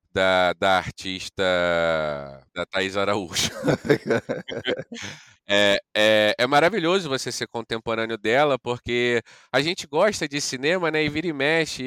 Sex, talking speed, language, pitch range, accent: male, 120 wpm, Portuguese, 100-130 Hz, Brazilian